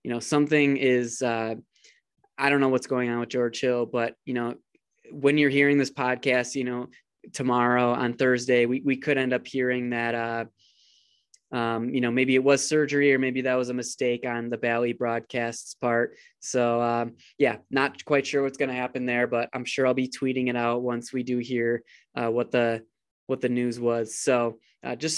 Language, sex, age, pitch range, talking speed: English, male, 20-39, 120-135 Hz, 205 wpm